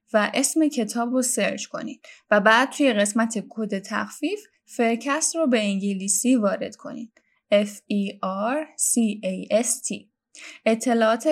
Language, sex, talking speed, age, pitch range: Persian, female, 105 wpm, 10-29, 210-275 Hz